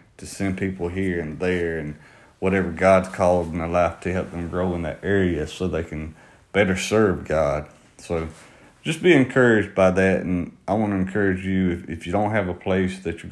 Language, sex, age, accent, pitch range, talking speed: English, male, 30-49, American, 80-100 Hz, 210 wpm